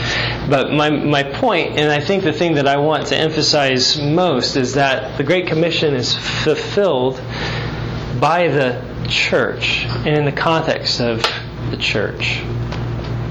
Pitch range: 120-140 Hz